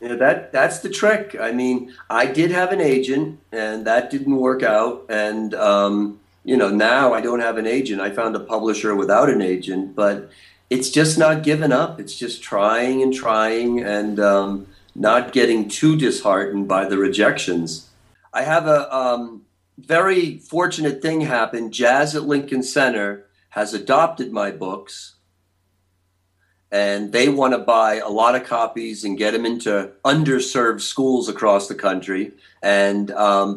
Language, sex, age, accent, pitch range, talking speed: English, male, 40-59, American, 100-140 Hz, 165 wpm